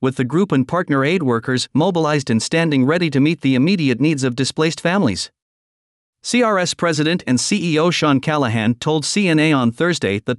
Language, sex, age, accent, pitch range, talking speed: English, male, 50-69, American, 130-165 Hz, 175 wpm